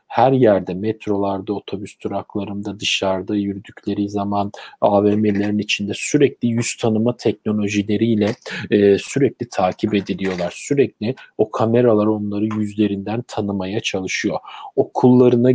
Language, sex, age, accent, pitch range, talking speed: Turkish, male, 40-59, native, 100-115 Hz, 100 wpm